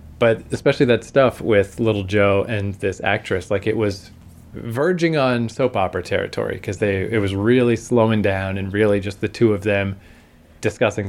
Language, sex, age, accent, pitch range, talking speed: English, male, 20-39, American, 100-125 Hz, 175 wpm